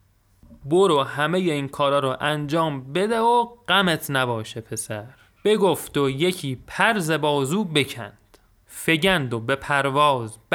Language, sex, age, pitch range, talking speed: Persian, male, 30-49, 125-165 Hz, 120 wpm